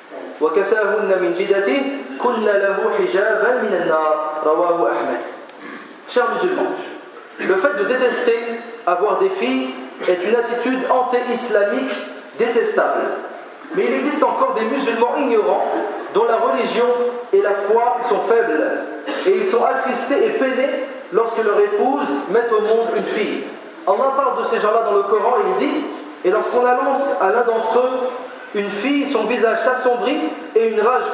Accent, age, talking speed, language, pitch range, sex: French, 40-59, 135 wpm, French, 215-265 Hz, male